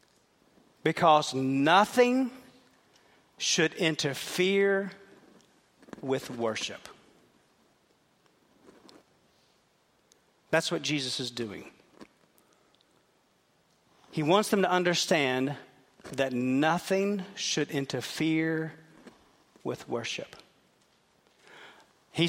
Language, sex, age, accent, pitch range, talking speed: English, male, 40-59, American, 155-210 Hz, 60 wpm